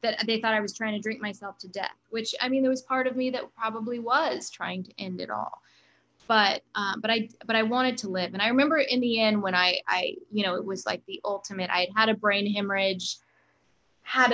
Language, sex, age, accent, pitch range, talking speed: English, female, 10-29, American, 195-245 Hz, 245 wpm